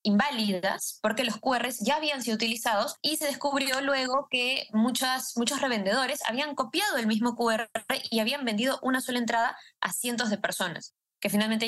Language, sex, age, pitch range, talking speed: Spanish, female, 20-39, 195-255 Hz, 170 wpm